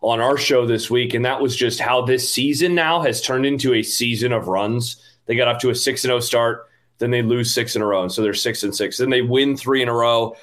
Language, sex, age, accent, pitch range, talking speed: English, male, 30-49, American, 125-165 Hz, 280 wpm